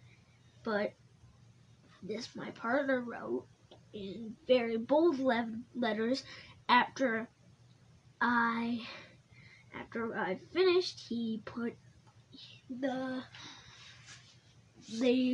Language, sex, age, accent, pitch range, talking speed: English, female, 10-29, American, 215-280 Hz, 75 wpm